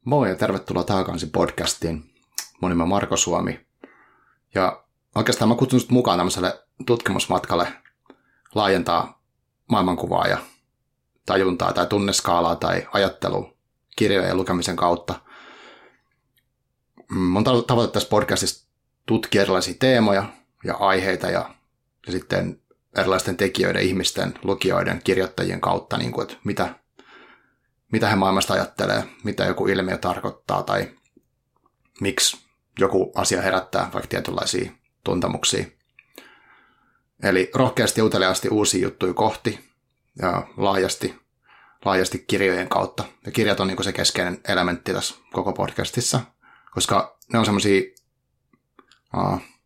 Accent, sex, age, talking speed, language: native, male, 30-49, 110 wpm, Finnish